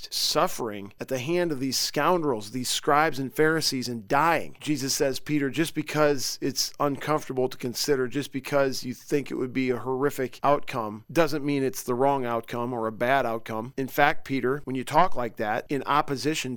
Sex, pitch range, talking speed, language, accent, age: male, 125-145 Hz, 190 wpm, English, American, 40-59